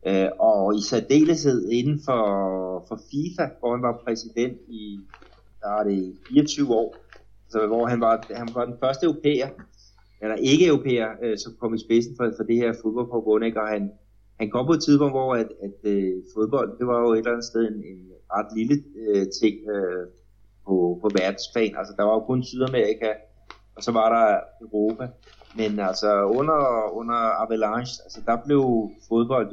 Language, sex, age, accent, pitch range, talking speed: Danish, male, 30-49, native, 100-120 Hz, 180 wpm